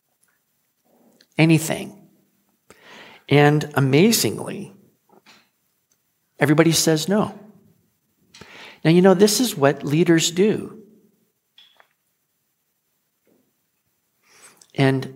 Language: English